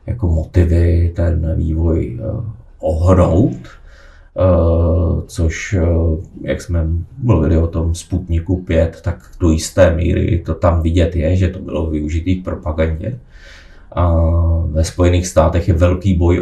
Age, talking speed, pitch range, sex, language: 30-49, 130 wpm, 80-90 Hz, male, Czech